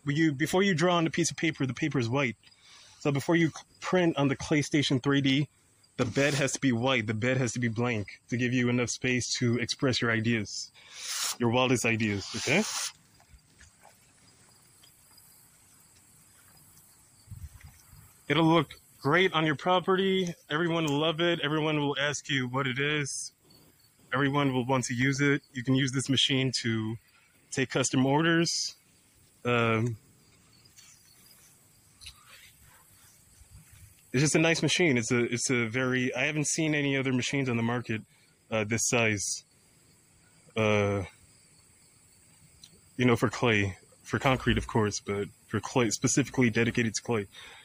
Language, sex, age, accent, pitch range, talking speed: English, male, 20-39, American, 120-145 Hz, 145 wpm